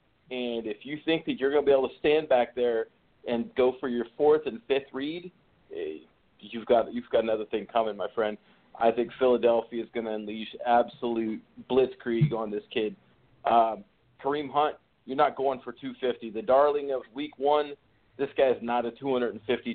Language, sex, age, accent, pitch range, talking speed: English, male, 40-59, American, 120-140 Hz, 190 wpm